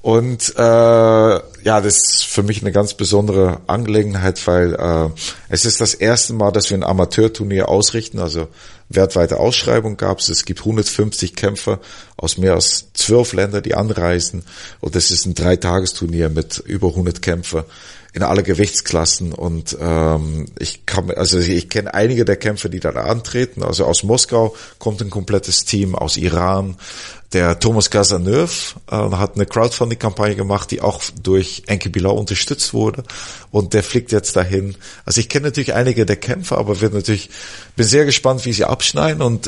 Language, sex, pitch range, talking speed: German, male, 90-110 Hz, 165 wpm